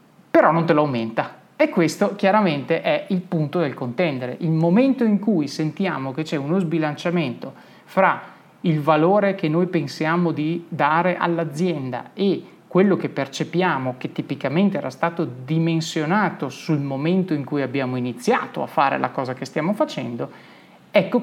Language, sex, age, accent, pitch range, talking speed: Italian, male, 30-49, native, 135-175 Hz, 155 wpm